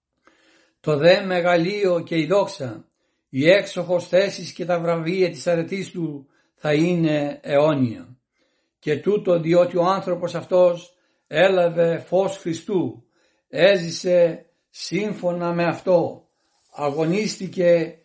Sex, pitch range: male, 160-180 Hz